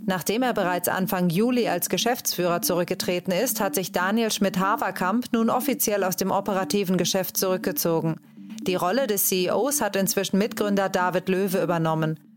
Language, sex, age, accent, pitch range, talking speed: German, female, 30-49, German, 180-215 Hz, 145 wpm